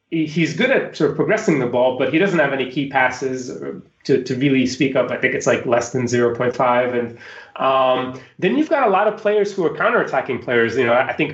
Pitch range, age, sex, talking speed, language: 125-155 Hz, 20-39, male, 235 wpm, English